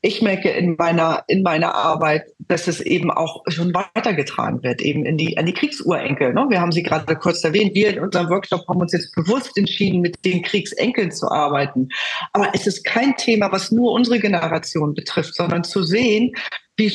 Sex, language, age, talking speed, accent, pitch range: female, German, 40-59, 195 wpm, German, 175-220 Hz